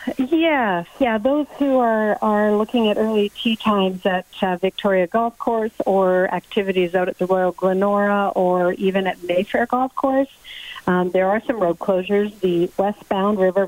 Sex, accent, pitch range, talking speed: female, American, 175-205 Hz, 165 wpm